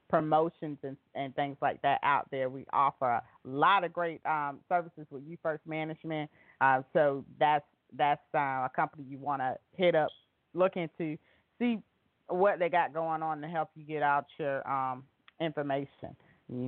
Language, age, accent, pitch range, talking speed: English, 30-49, American, 135-165 Hz, 175 wpm